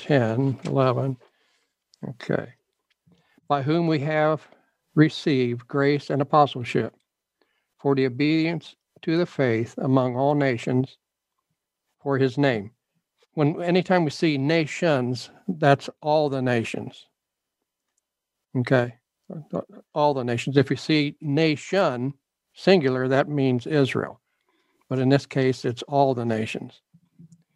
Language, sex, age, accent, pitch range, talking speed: English, male, 60-79, American, 130-155 Hz, 115 wpm